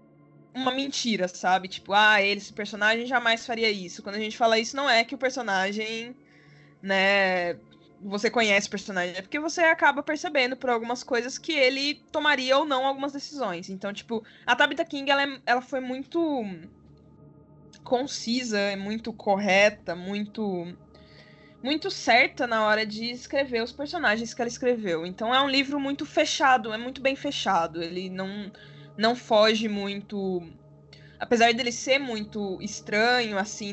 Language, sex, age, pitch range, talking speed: Portuguese, female, 10-29, 195-255 Hz, 155 wpm